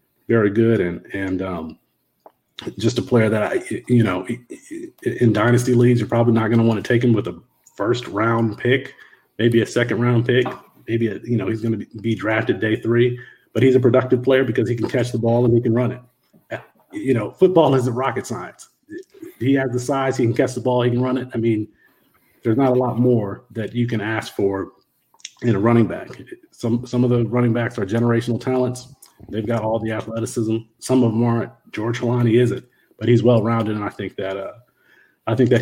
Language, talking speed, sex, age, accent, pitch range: English, 215 wpm, male, 40-59, American, 110-125 Hz